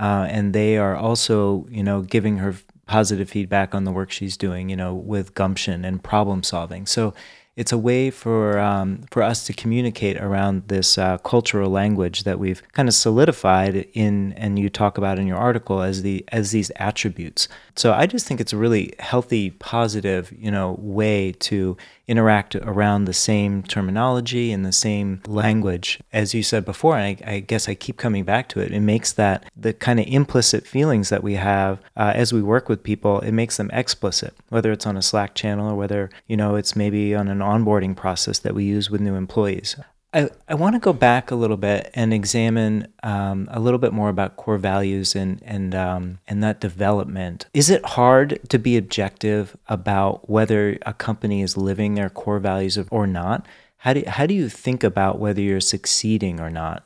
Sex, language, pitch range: male, English, 95-115 Hz